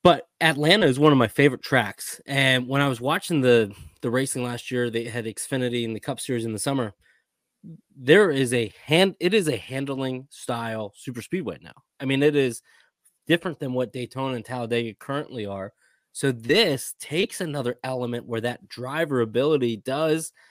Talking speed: 180 wpm